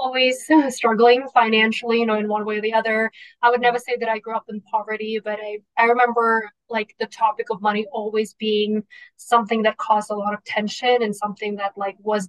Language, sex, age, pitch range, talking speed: English, female, 20-39, 210-240 Hz, 215 wpm